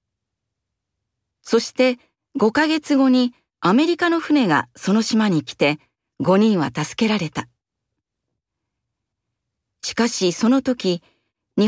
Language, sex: Japanese, female